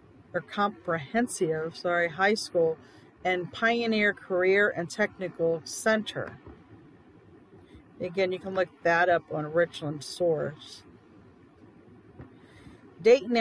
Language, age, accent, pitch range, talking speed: English, 40-59, American, 180-225 Hz, 95 wpm